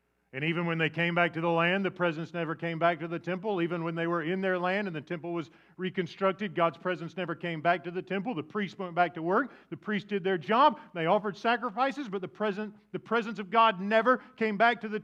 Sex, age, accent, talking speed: male, 40-59, American, 245 wpm